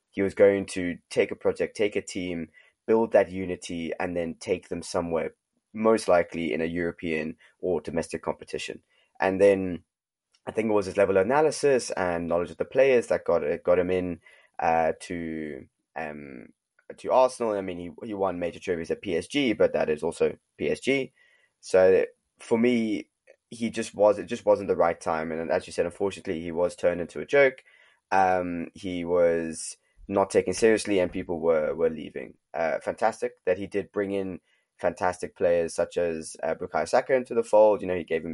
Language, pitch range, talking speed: English, 85-115 Hz, 190 wpm